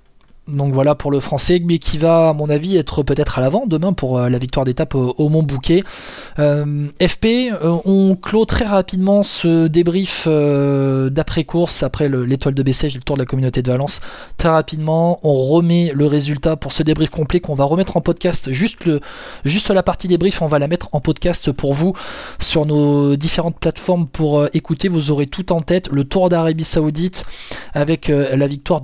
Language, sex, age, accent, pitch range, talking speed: French, male, 20-39, French, 140-170 Hz, 190 wpm